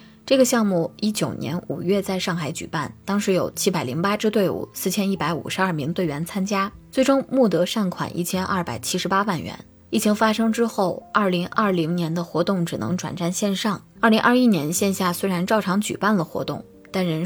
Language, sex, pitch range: Chinese, female, 165-200 Hz